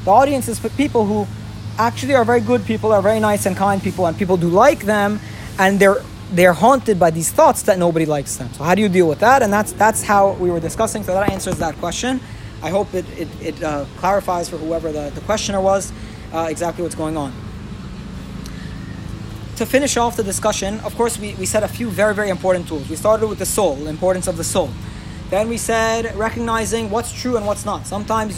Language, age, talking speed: English, 20-39, 225 wpm